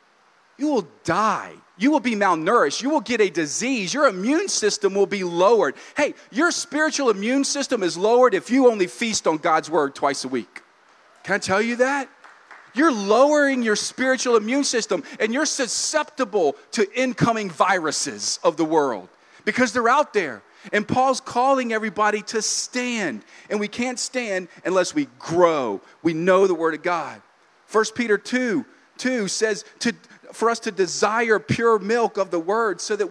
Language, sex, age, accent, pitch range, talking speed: English, male, 40-59, American, 205-270 Hz, 170 wpm